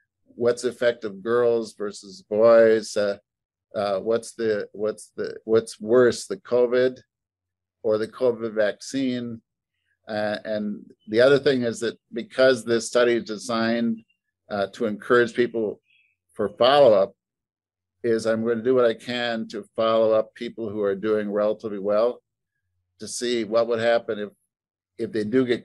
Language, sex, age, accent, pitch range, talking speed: English, male, 50-69, American, 105-120 Hz, 155 wpm